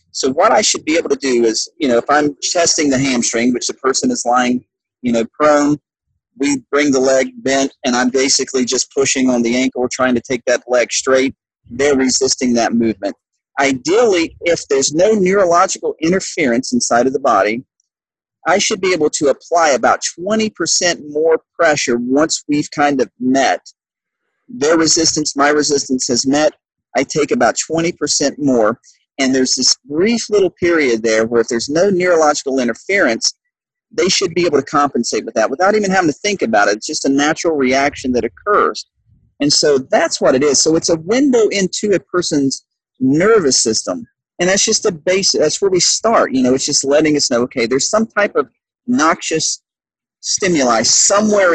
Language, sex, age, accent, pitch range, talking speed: English, male, 40-59, American, 130-180 Hz, 185 wpm